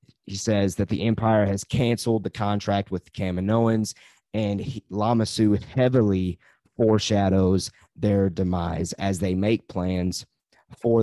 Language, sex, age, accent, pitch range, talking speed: English, male, 30-49, American, 95-115 Hz, 130 wpm